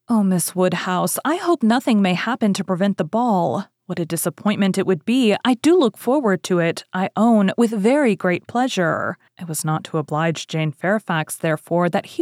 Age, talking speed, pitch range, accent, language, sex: 30-49, 195 wpm, 165-225 Hz, American, English, female